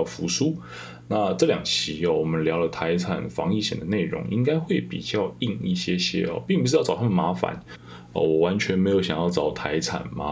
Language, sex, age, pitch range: Chinese, male, 20-39, 80-95 Hz